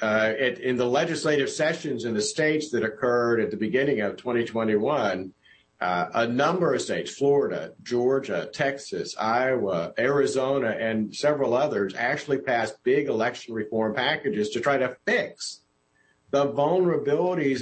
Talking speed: 135 wpm